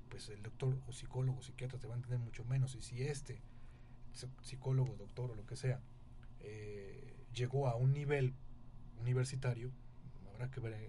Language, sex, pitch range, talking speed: Spanish, male, 115-125 Hz, 170 wpm